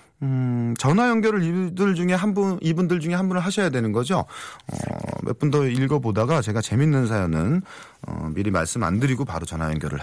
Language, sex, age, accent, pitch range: Korean, male, 40-59, native, 110-180 Hz